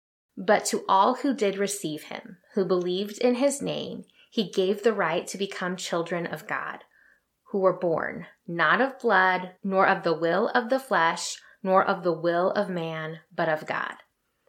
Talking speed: 180 wpm